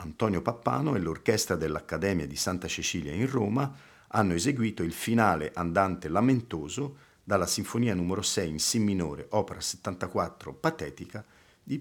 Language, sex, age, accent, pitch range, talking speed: Italian, male, 50-69, native, 90-125 Hz, 135 wpm